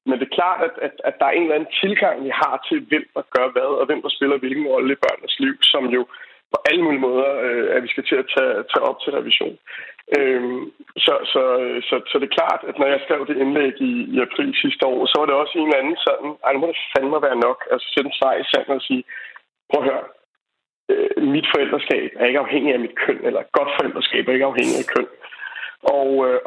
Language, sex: Danish, male